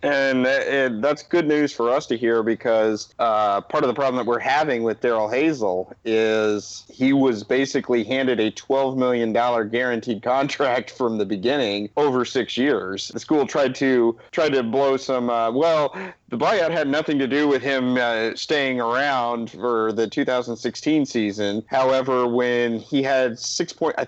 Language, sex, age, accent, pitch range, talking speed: English, male, 40-59, American, 115-135 Hz, 170 wpm